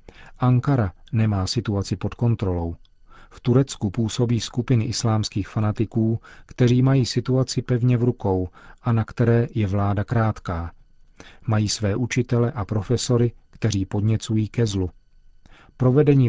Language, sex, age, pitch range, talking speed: Czech, male, 40-59, 100-120 Hz, 120 wpm